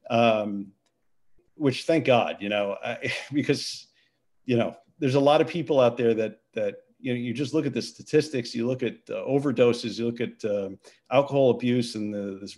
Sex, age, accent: male, 50-69, American